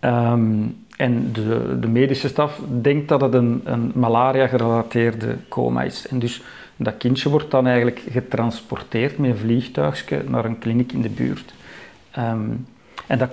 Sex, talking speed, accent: male, 160 wpm, Dutch